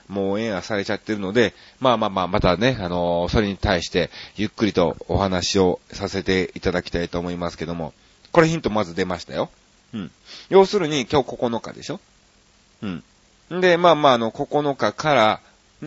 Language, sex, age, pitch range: Japanese, male, 40-59, 90-125 Hz